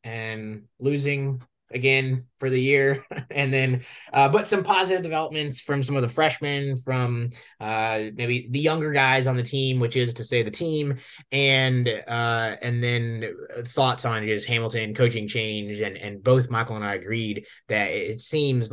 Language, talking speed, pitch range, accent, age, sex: English, 170 wpm, 115-140 Hz, American, 20-39, male